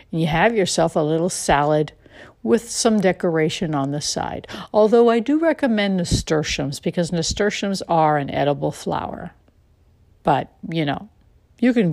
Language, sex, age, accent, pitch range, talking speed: English, female, 60-79, American, 145-185 Hz, 140 wpm